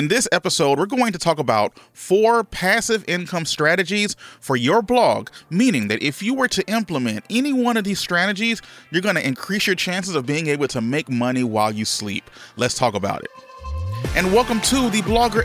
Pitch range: 120-185 Hz